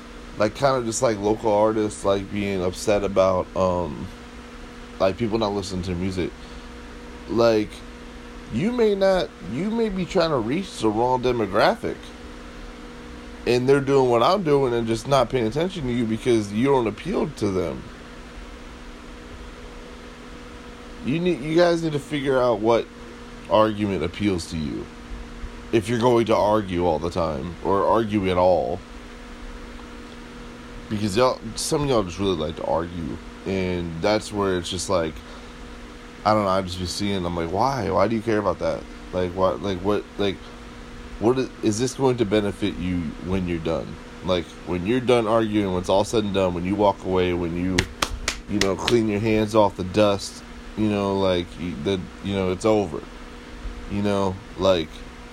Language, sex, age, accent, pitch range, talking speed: English, male, 20-39, American, 80-110 Hz, 170 wpm